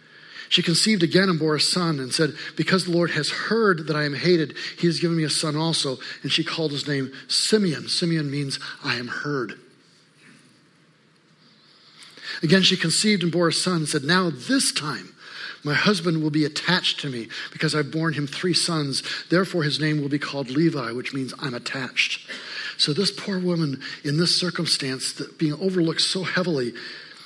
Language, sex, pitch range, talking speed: English, male, 150-180 Hz, 185 wpm